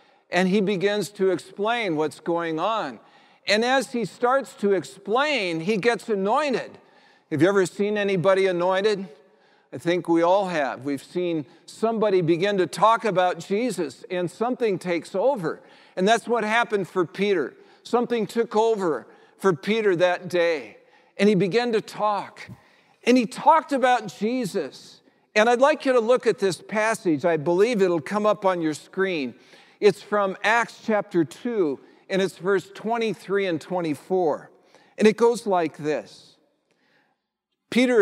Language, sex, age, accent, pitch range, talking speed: English, male, 50-69, American, 180-235 Hz, 155 wpm